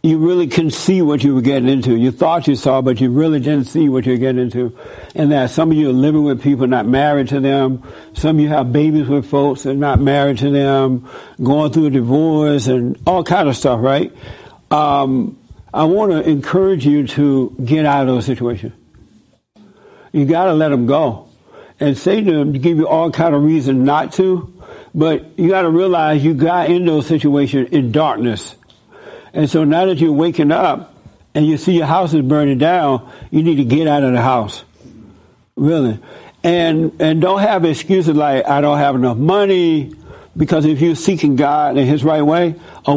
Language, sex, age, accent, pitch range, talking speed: English, male, 60-79, American, 135-160 Hz, 205 wpm